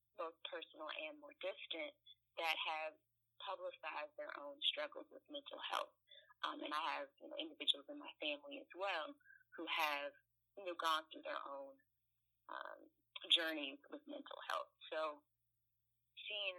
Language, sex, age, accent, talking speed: English, female, 30-49, American, 150 wpm